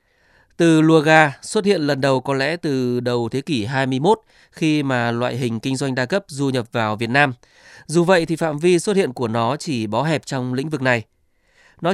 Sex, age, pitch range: male, 20-39, 125-160 Hz